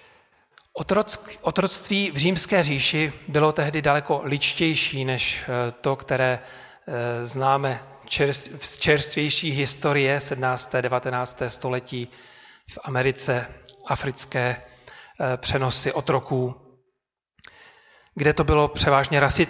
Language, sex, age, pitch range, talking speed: Czech, male, 40-59, 130-155 Hz, 85 wpm